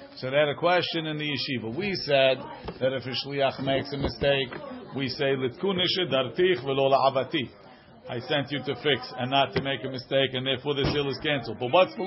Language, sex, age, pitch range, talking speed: English, male, 50-69, 135-165 Hz, 195 wpm